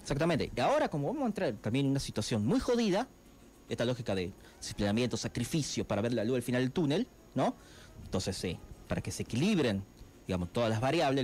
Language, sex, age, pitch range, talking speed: Spanish, male, 40-59, 105-155 Hz, 205 wpm